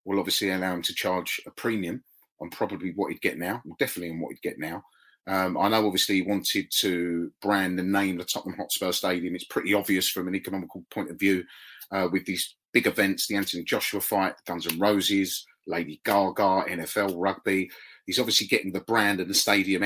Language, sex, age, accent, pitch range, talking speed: English, male, 30-49, British, 90-105 Hz, 205 wpm